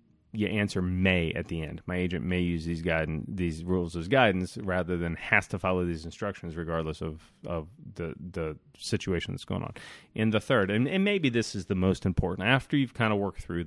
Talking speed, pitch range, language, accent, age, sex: 215 wpm, 85-115 Hz, English, American, 30-49, male